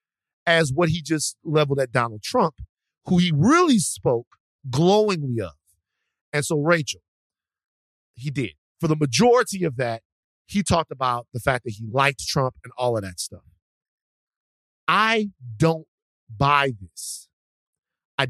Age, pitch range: 40-59, 115-180 Hz